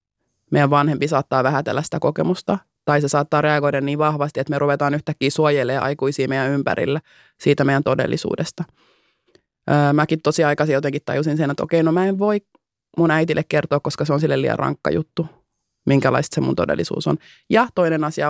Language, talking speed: Finnish, 170 wpm